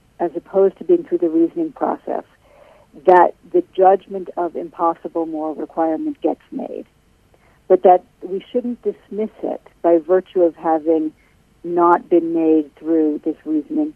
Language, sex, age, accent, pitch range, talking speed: English, female, 60-79, American, 165-220 Hz, 140 wpm